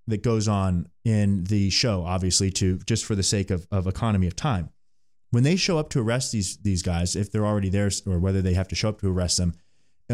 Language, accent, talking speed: English, American, 245 wpm